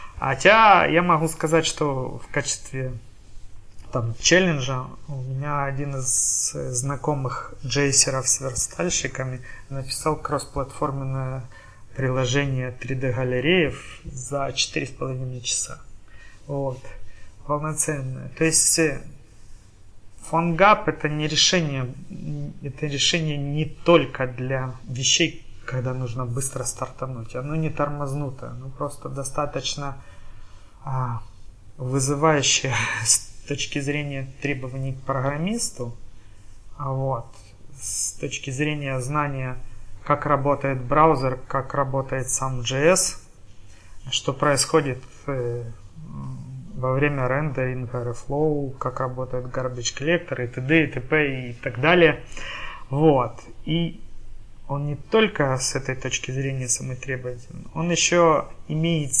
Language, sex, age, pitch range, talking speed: Ukrainian, male, 30-49, 125-145 Hz, 100 wpm